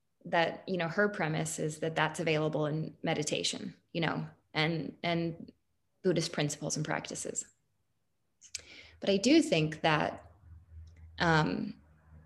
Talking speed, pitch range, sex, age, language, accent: 120 wpm, 150-180 Hz, female, 20-39, English, American